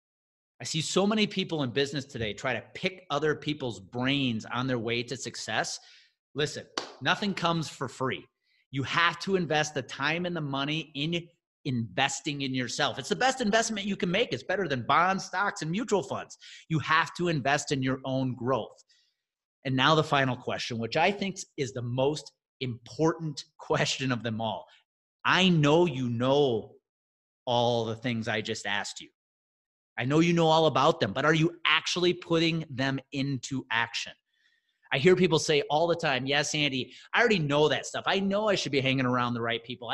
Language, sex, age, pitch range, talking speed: English, male, 30-49, 130-185 Hz, 190 wpm